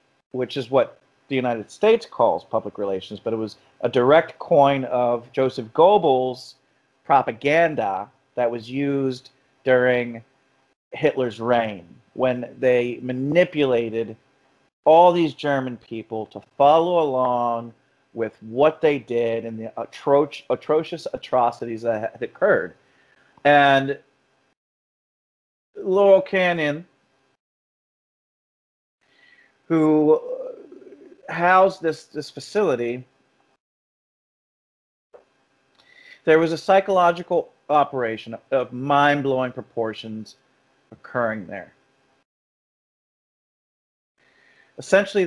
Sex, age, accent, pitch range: male, 40-59, American, 125-160 Hz